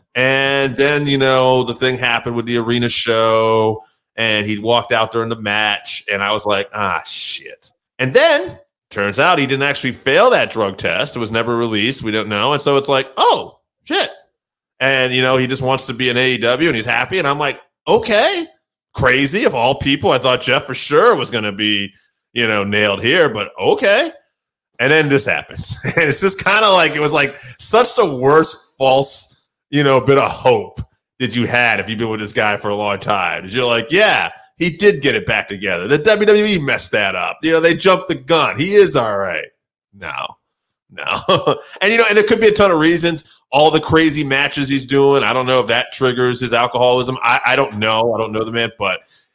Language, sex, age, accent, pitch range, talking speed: English, male, 30-49, American, 115-145 Hz, 220 wpm